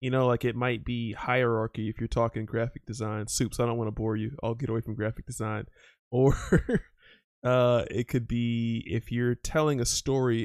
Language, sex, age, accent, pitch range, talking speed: English, male, 20-39, American, 110-125 Hz, 200 wpm